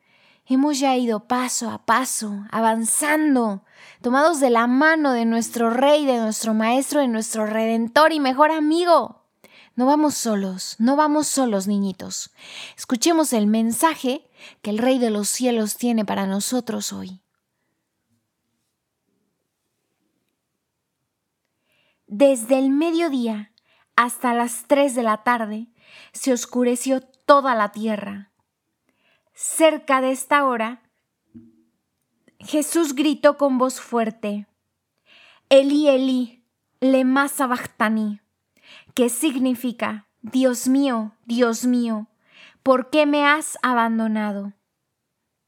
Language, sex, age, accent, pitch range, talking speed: Spanish, female, 20-39, Mexican, 220-275 Hz, 105 wpm